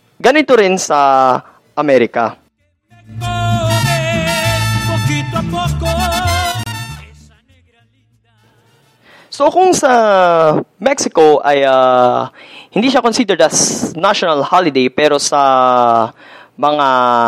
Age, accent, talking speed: 20-39, native, 65 wpm